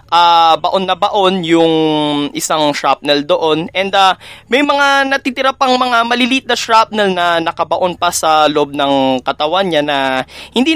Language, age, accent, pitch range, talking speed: Filipino, 20-39, native, 155-220 Hz, 155 wpm